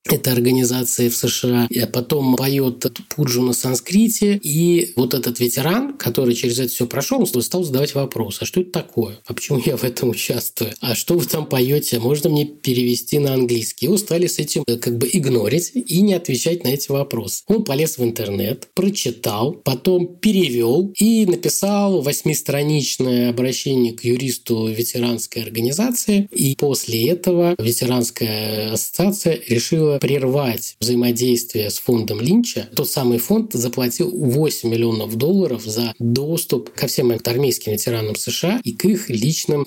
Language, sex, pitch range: Russian, male, 115-150 Hz